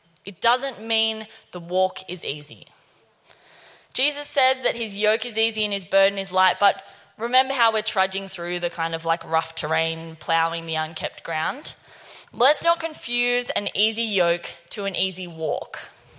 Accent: Australian